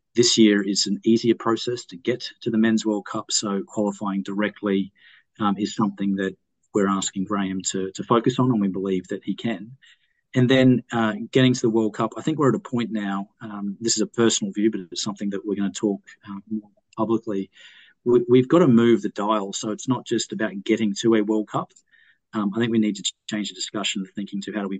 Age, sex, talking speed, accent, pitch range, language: 30-49, male, 235 wpm, Australian, 100-115 Hz, English